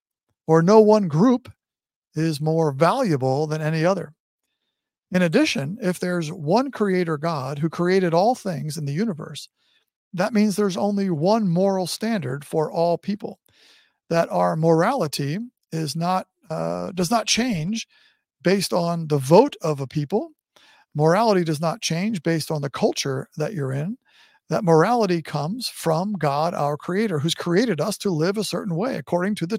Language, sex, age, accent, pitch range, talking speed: English, male, 50-69, American, 155-205 Hz, 160 wpm